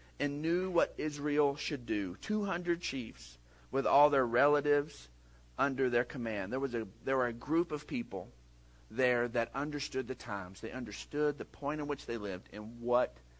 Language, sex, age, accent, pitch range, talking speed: English, male, 40-59, American, 95-145 Hz, 175 wpm